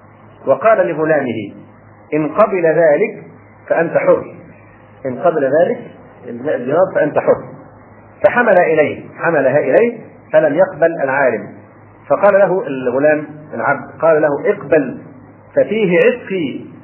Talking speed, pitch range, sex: 100 wpm, 140-215 Hz, male